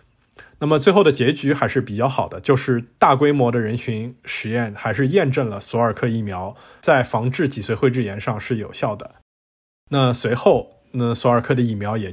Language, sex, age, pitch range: Chinese, male, 20-39, 115-140 Hz